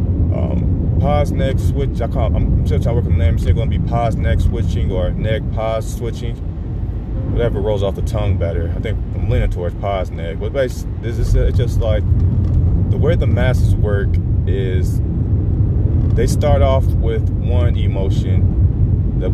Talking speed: 180 wpm